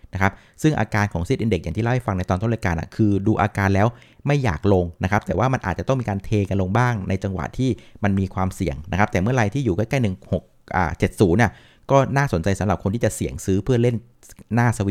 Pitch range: 95-120 Hz